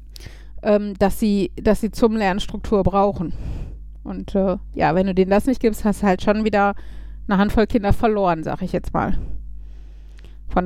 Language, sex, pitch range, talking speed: German, female, 165-210 Hz, 165 wpm